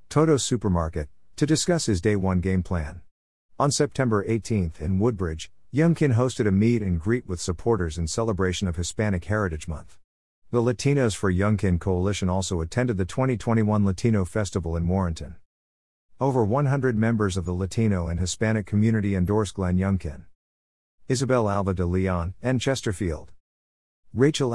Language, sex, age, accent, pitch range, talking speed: English, male, 50-69, American, 80-115 Hz, 145 wpm